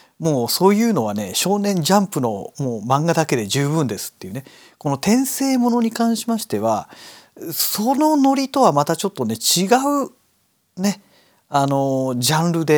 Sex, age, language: male, 40-59, Japanese